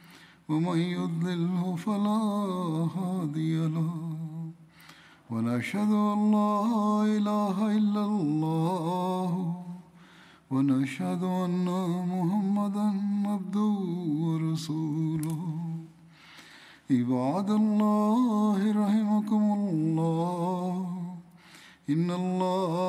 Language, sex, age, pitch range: Tamil, male, 50-69, 160-205 Hz